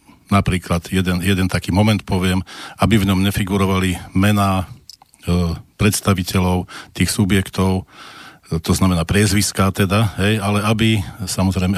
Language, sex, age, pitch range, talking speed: Slovak, male, 50-69, 95-110 Hz, 120 wpm